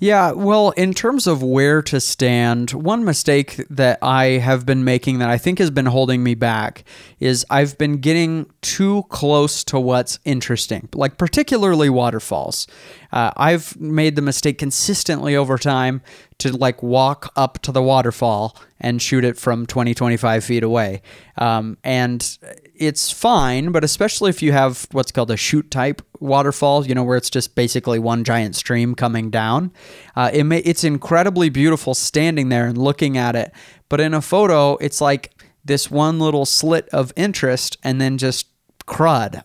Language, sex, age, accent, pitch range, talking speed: English, male, 20-39, American, 125-150 Hz, 170 wpm